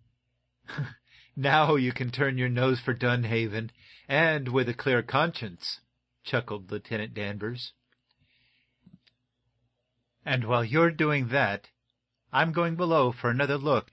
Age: 50-69